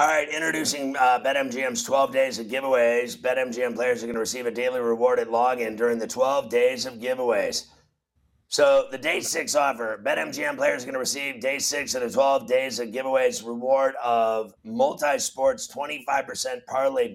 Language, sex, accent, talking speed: English, male, American, 165 wpm